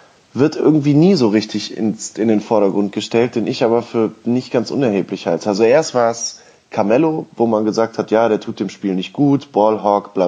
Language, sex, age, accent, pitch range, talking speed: German, male, 20-39, German, 105-130 Hz, 205 wpm